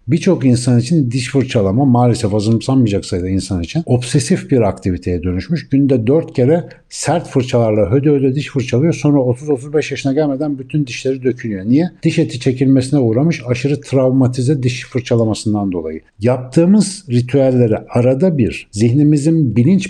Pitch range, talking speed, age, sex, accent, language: 110-140 Hz, 140 wpm, 60-79, male, native, Turkish